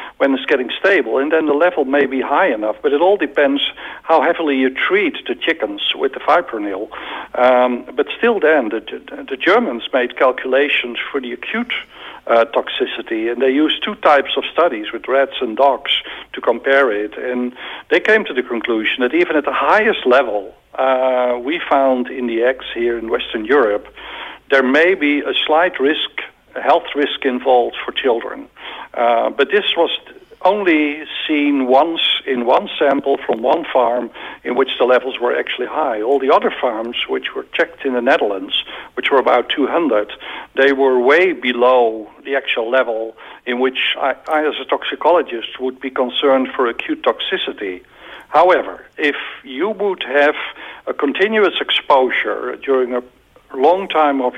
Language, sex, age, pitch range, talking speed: English, male, 60-79, 125-195 Hz, 170 wpm